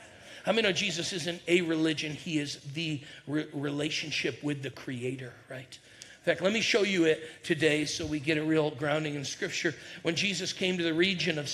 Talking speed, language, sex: 200 wpm, English, male